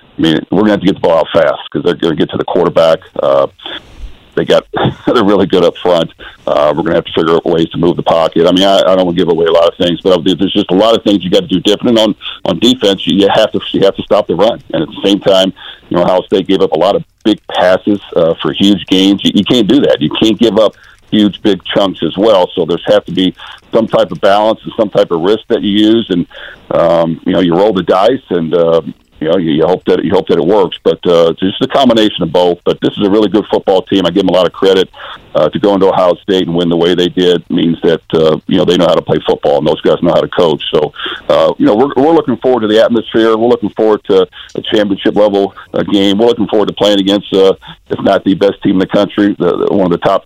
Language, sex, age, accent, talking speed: English, male, 50-69, American, 295 wpm